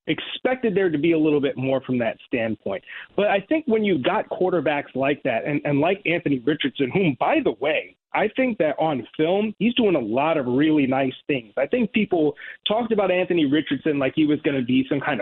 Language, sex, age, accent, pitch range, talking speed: English, male, 30-49, American, 145-190 Hz, 225 wpm